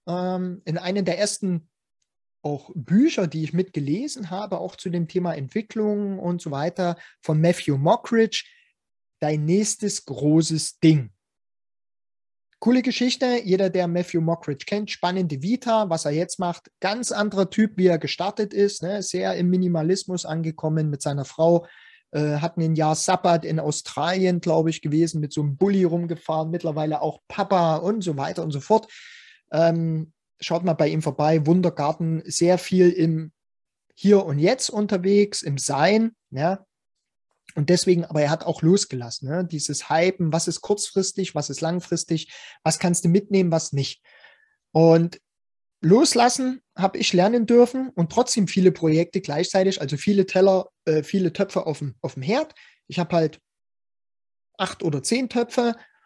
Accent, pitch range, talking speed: German, 155-195 Hz, 150 wpm